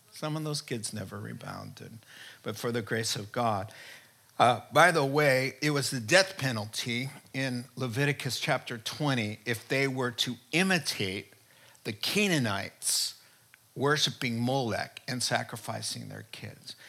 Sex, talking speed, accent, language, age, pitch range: male, 135 wpm, American, English, 50-69, 115-140 Hz